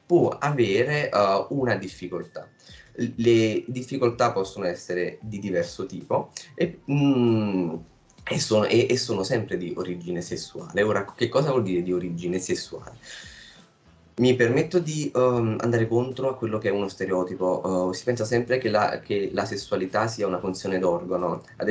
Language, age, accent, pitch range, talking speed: Italian, 20-39, native, 90-120 Hz, 160 wpm